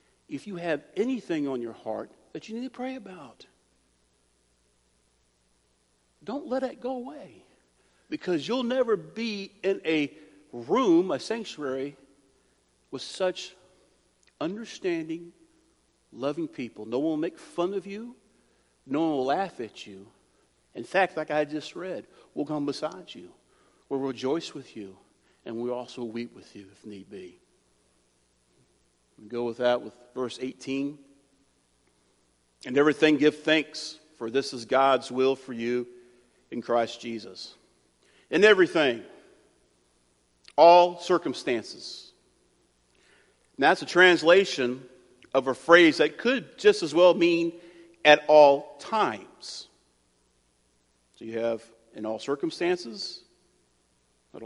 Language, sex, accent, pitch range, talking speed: English, male, American, 115-185 Hz, 130 wpm